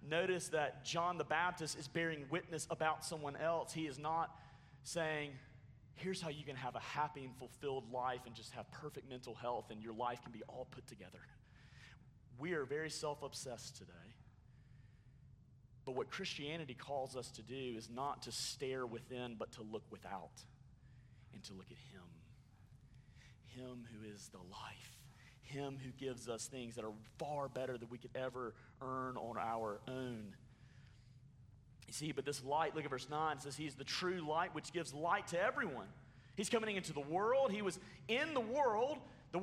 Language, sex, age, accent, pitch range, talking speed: English, male, 30-49, American, 125-180 Hz, 180 wpm